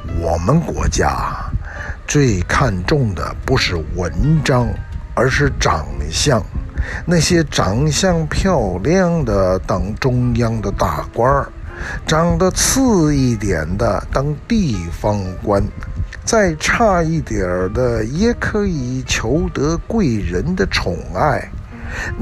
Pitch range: 95-160 Hz